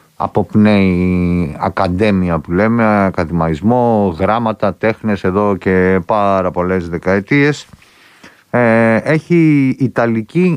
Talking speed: 85 wpm